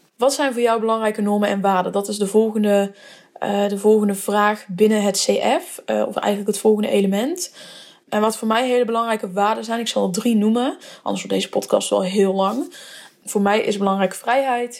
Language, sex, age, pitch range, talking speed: Dutch, female, 10-29, 195-230 Hz, 200 wpm